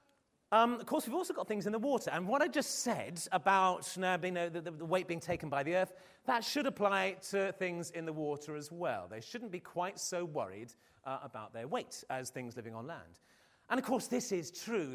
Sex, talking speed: male, 220 wpm